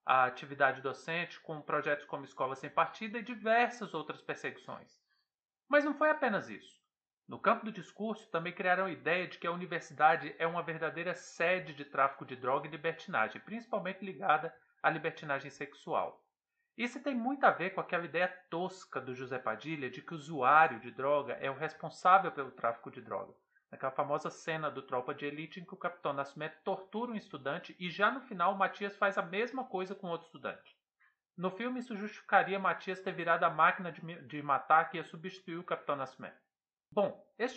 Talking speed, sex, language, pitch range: 185 wpm, male, Portuguese, 155-210 Hz